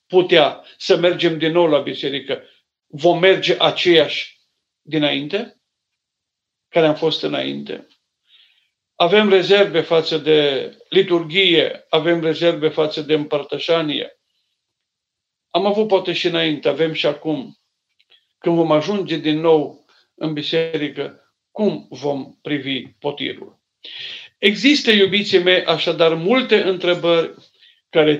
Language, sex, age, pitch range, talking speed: Romanian, male, 50-69, 155-195 Hz, 110 wpm